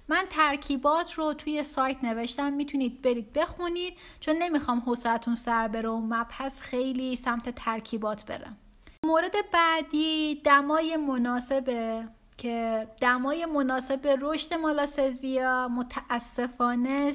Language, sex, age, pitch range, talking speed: Persian, female, 10-29, 235-290 Hz, 100 wpm